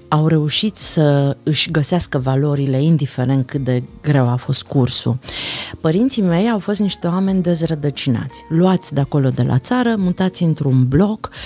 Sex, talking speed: female, 150 wpm